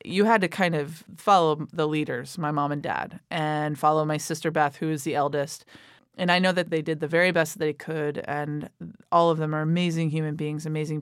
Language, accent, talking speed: English, American, 225 wpm